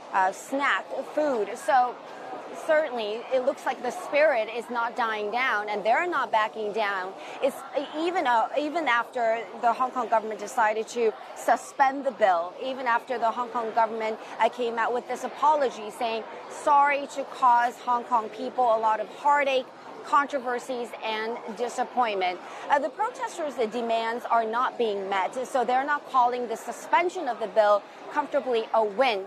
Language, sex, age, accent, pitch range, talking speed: English, female, 30-49, American, 225-275 Hz, 160 wpm